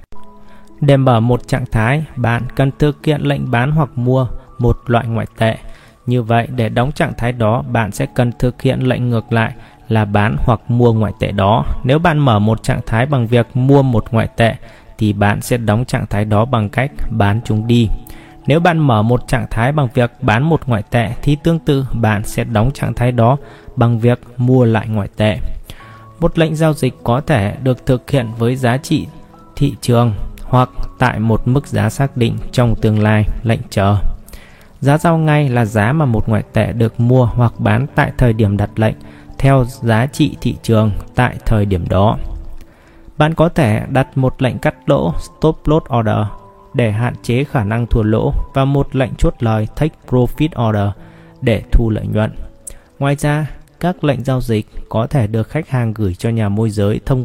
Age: 20-39